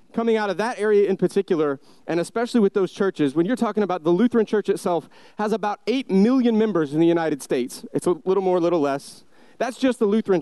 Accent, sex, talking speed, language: American, male, 230 wpm, English